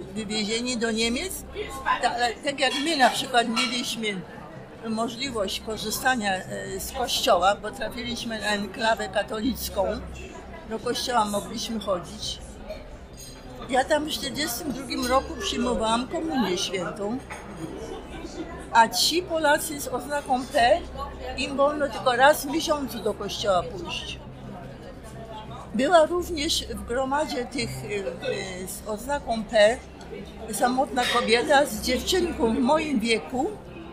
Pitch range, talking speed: 220-280 Hz, 110 wpm